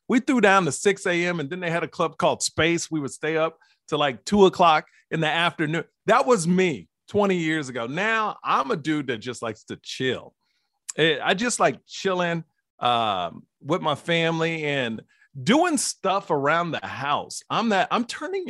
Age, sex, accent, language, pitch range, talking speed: 40-59, male, American, English, 140-210 Hz, 190 wpm